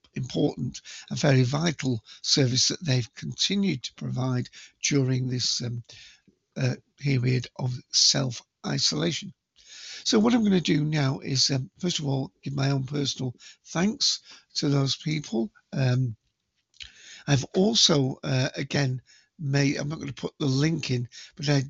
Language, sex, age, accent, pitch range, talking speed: English, male, 60-79, British, 130-155 Hz, 150 wpm